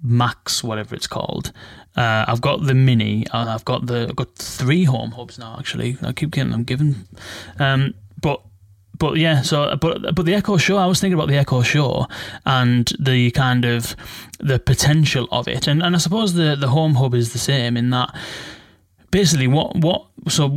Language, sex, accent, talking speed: English, male, British, 195 wpm